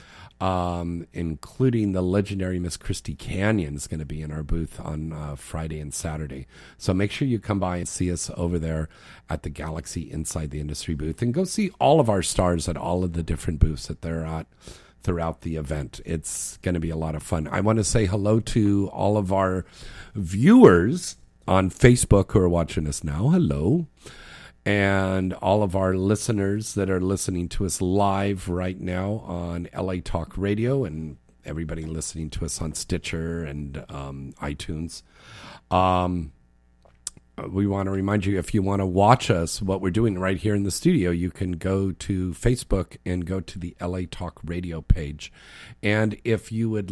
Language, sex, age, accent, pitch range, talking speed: English, male, 50-69, American, 80-100 Hz, 185 wpm